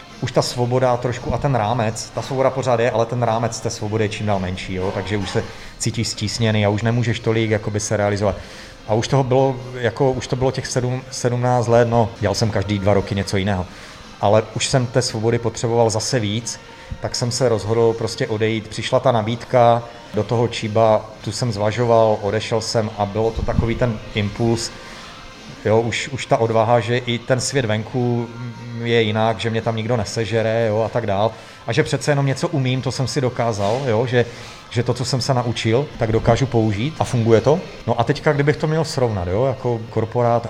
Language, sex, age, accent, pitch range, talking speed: Czech, male, 30-49, native, 105-120 Hz, 195 wpm